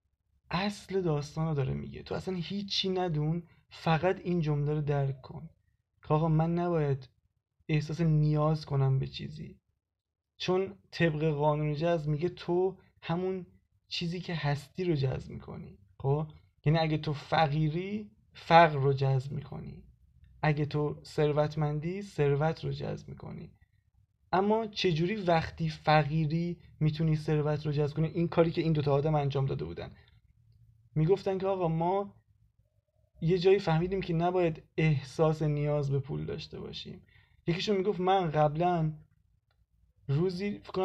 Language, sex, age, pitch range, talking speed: Persian, male, 20-39, 135-175 Hz, 135 wpm